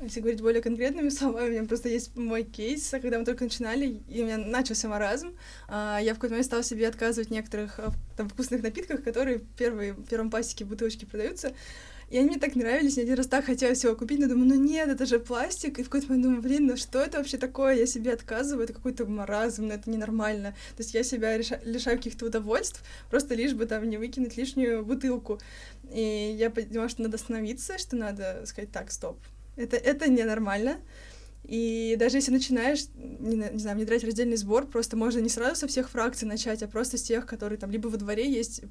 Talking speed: 210 wpm